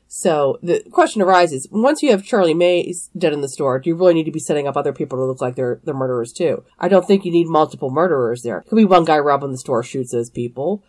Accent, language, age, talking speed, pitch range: American, English, 30-49, 270 wpm, 155-220 Hz